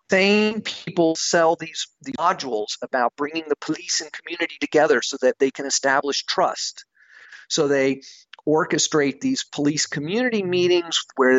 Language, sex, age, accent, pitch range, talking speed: English, male, 50-69, American, 140-165 Hz, 140 wpm